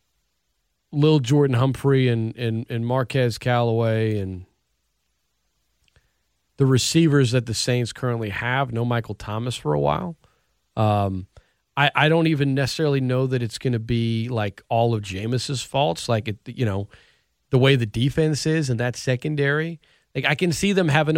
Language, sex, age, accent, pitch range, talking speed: English, male, 40-59, American, 110-150 Hz, 160 wpm